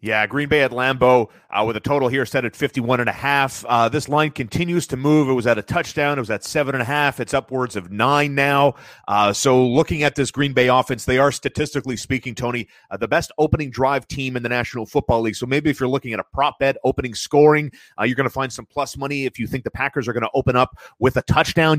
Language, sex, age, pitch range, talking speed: English, male, 30-49, 120-145 Hz, 260 wpm